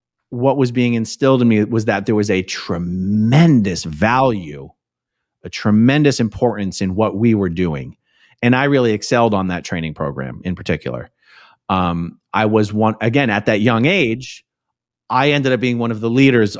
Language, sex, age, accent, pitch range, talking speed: English, male, 30-49, American, 100-140 Hz, 175 wpm